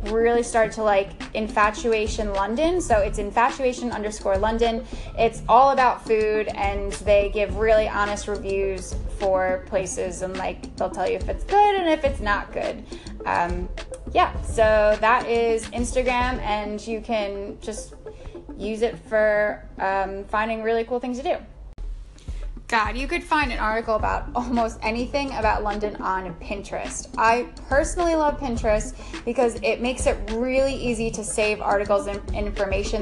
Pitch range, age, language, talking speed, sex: 210-265 Hz, 10-29, English, 155 wpm, female